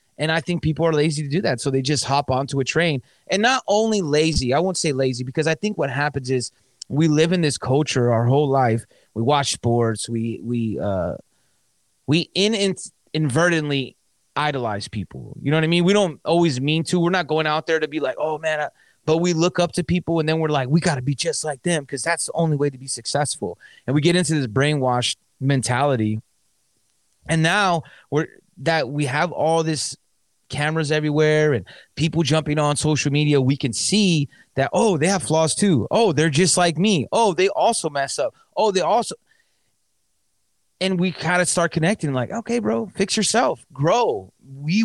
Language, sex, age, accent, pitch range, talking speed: English, male, 20-39, American, 135-175 Hz, 205 wpm